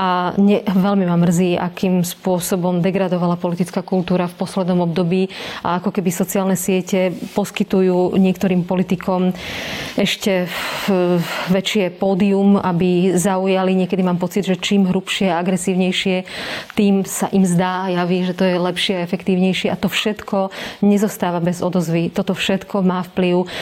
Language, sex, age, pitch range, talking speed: Slovak, female, 30-49, 180-195 Hz, 140 wpm